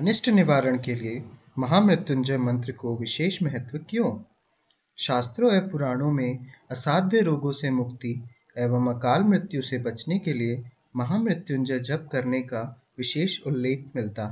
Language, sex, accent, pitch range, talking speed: Hindi, male, native, 125-160 Hz, 130 wpm